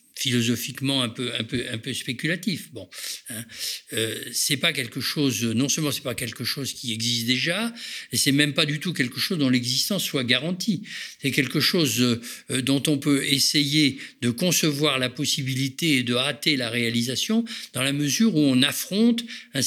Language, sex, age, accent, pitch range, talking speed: French, male, 50-69, French, 120-150 Hz, 185 wpm